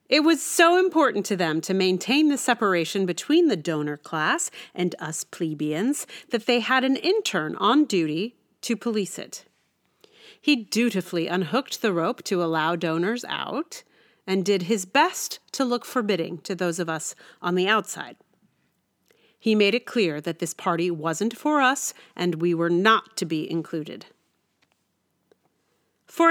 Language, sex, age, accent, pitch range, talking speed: English, female, 40-59, American, 175-280 Hz, 155 wpm